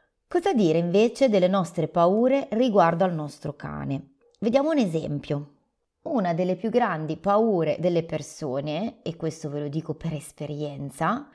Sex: female